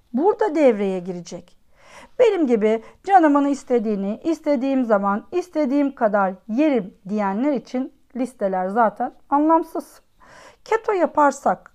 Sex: female